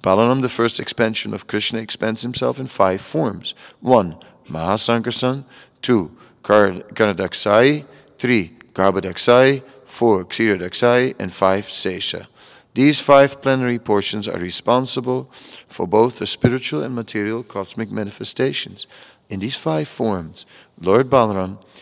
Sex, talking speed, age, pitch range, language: male, 120 wpm, 50-69, 95-125 Hz, English